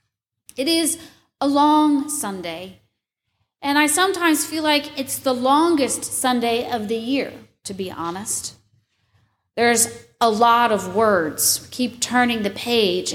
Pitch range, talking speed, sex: 200-280 Hz, 130 wpm, female